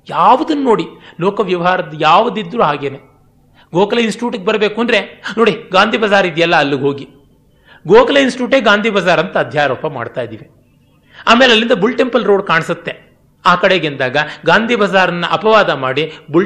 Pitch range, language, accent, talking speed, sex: 145-220 Hz, Kannada, native, 140 wpm, male